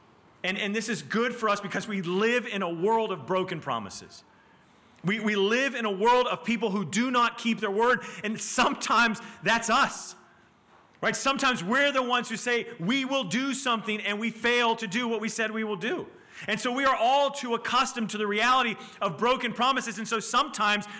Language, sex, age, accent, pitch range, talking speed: English, male, 30-49, American, 170-235 Hz, 205 wpm